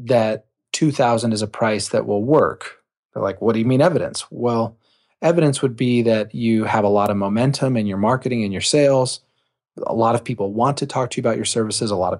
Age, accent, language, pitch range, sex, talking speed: 30-49, American, English, 100-130 Hz, male, 230 wpm